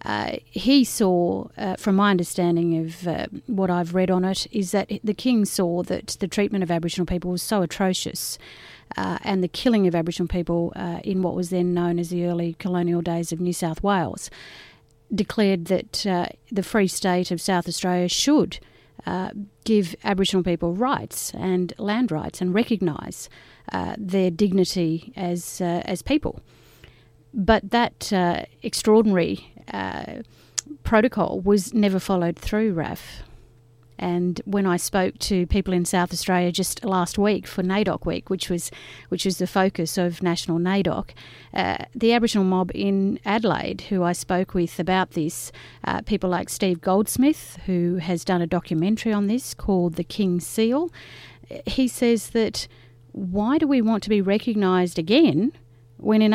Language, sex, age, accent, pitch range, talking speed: English, female, 40-59, Australian, 175-205 Hz, 165 wpm